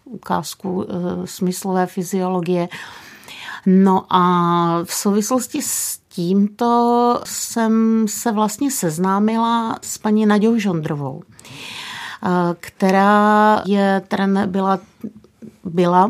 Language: Czech